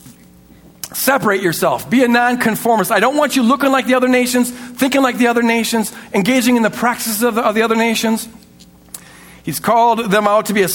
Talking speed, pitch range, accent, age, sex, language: 195 wpm, 200-255 Hz, American, 50-69, male, English